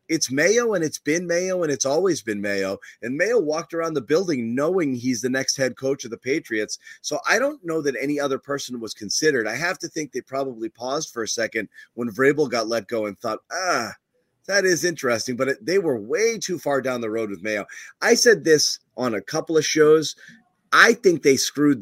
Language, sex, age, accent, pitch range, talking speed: English, male, 30-49, American, 130-175 Hz, 220 wpm